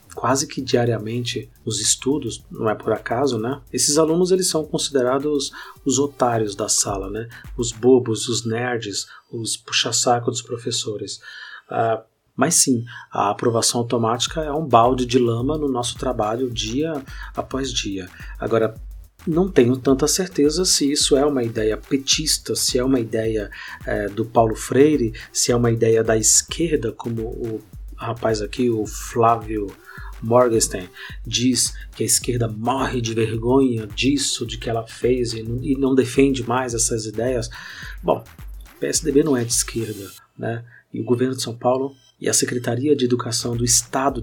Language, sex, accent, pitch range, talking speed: Portuguese, male, Brazilian, 115-135 Hz, 155 wpm